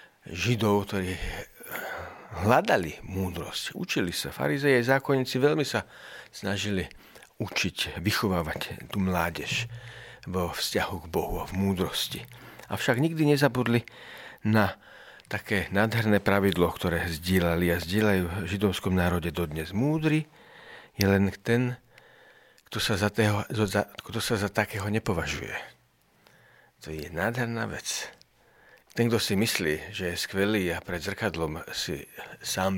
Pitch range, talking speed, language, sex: 90-115 Hz, 120 wpm, Slovak, male